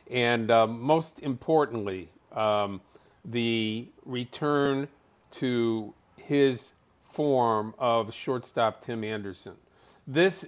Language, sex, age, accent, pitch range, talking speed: English, male, 50-69, American, 115-135 Hz, 85 wpm